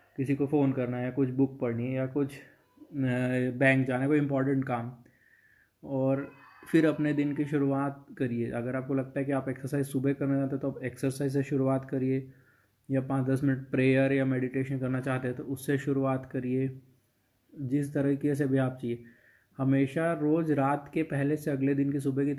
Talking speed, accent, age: 190 wpm, native, 20-39